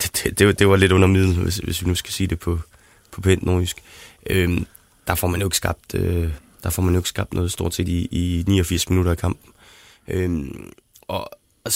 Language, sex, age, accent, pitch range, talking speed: Danish, male, 20-39, native, 90-105 Hz, 220 wpm